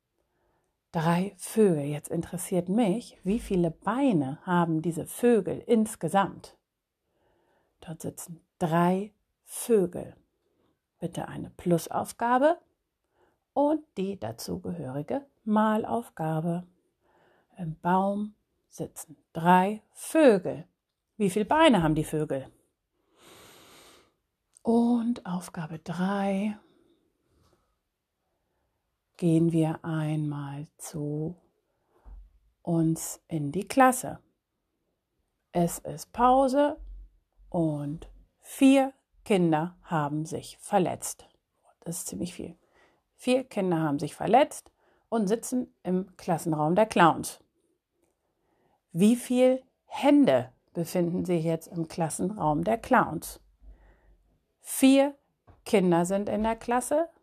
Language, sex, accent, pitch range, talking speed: German, female, German, 160-235 Hz, 90 wpm